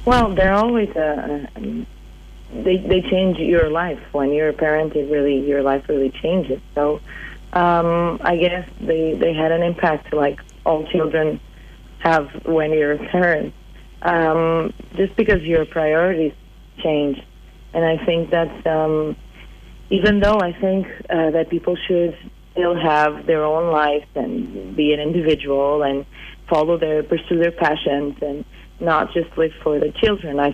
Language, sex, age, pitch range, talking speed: English, female, 30-49, 155-180 Hz, 155 wpm